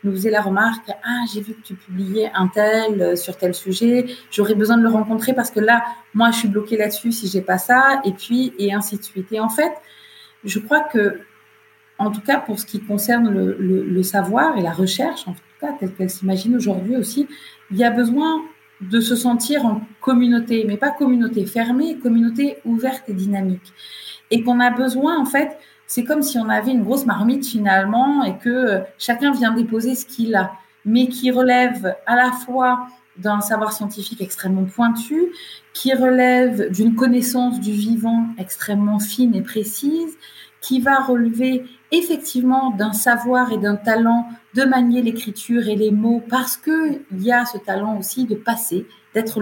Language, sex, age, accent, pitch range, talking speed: French, female, 30-49, French, 205-250 Hz, 185 wpm